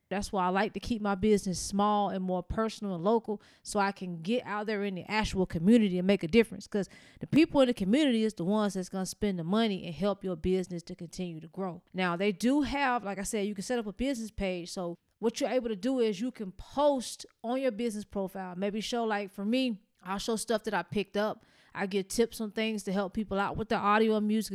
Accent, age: American, 20-39